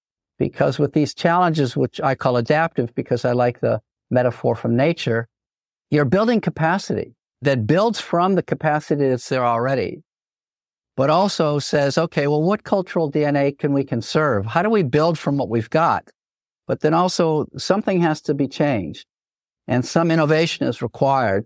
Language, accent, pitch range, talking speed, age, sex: English, American, 125-165 Hz, 160 wpm, 50-69, male